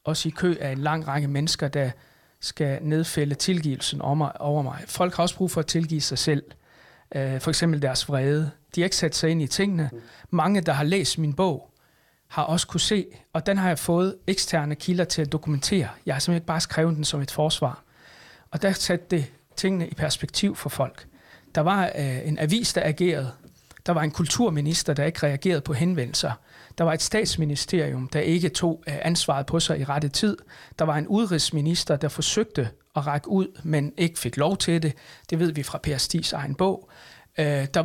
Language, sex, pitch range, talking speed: Danish, male, 145-175 Hz, 200 wpm